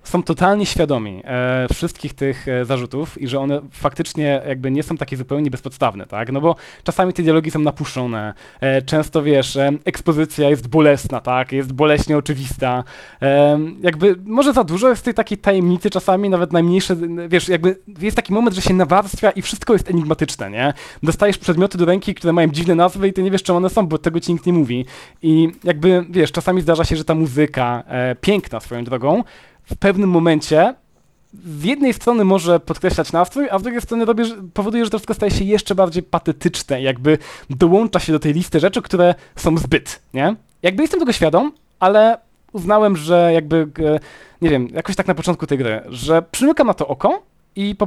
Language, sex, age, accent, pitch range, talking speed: Polish, male, 20-39, native, 145-190 Hz, 190 wpm